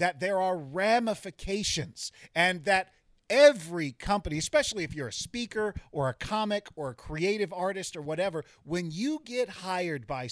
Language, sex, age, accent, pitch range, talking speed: English, male, 40-59, American, 155-210 Hz, 155 wpm